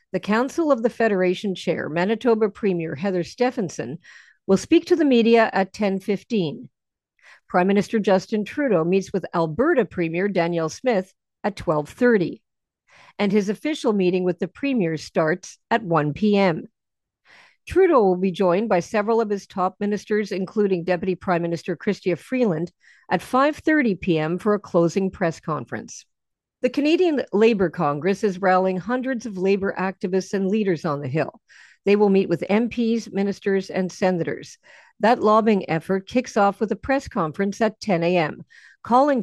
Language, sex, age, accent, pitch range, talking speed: English, female, 50-69, American, 180-230 Hz, 155 wpm